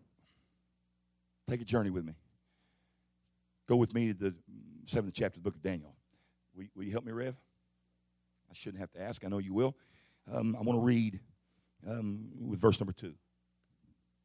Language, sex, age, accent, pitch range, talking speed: English, male, 50-69, American, 85-100 Hz, 175 wpm